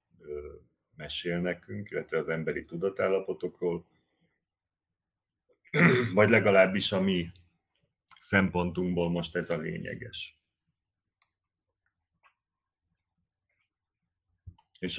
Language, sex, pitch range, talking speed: Hungarian, male, 85-105 Hz, 65 wpm